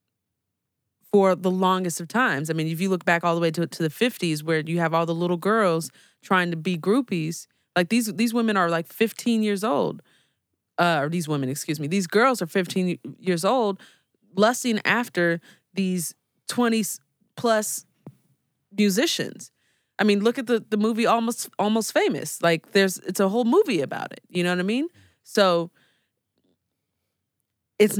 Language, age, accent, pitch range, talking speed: English, 20-39, American, 160-205 Hz, 170 wpm